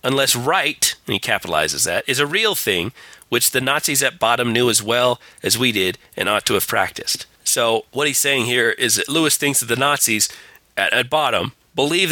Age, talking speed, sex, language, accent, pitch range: 40-59, 210 wpm, male, English, American, 110-140 Hz